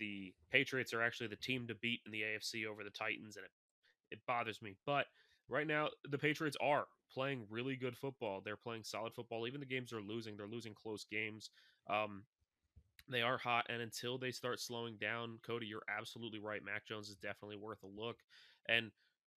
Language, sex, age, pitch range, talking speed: English, male, 20-39, 110-135 Hz, 200 wpm